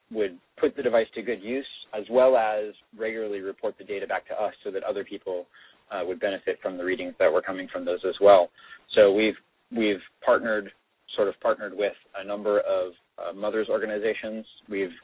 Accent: American